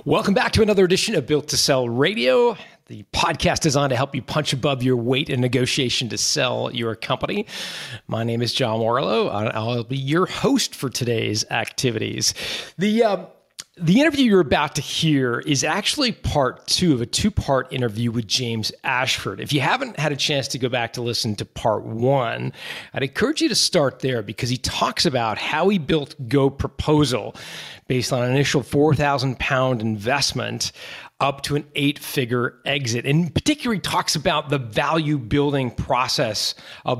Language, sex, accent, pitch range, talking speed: English, male, American, 125-165 Hz, 175 wpm